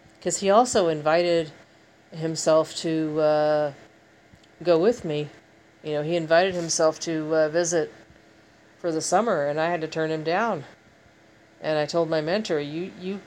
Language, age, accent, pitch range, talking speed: English, 40-59, American, 145-165 Hz, 160 wpm